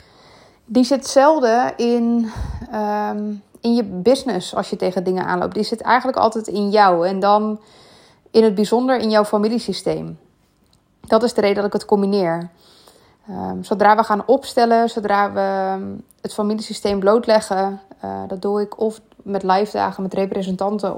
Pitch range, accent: 195-225 Hz, Dutch